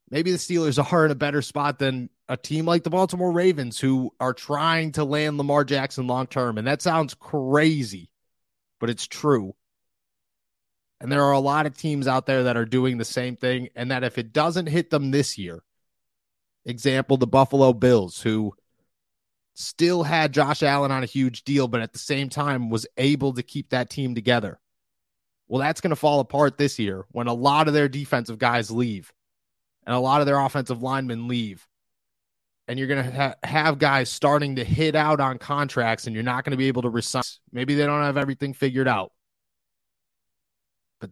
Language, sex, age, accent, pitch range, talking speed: English, male, 30-49, American, 120-150 Hz, 195 wpm